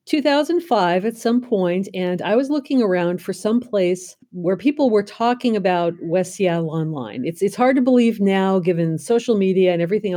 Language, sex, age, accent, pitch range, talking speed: English, female, 50-69, American, 160-210 Hz, 185 wpm